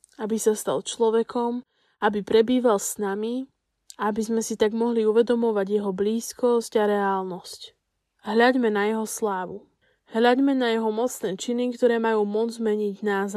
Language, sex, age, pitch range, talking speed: Slovak, female, 10-29, 205-245 Hz, 145 wpm